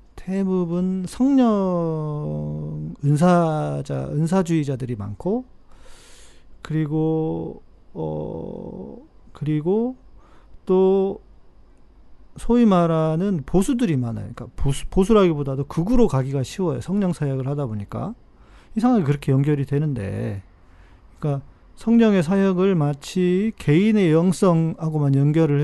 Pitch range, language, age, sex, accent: 125-175 Hz, Korean, 40-59, male, native